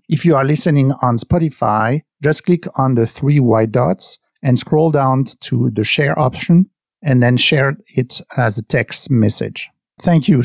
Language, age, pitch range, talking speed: English, 50-69, 125-150 Hz, 170 wpm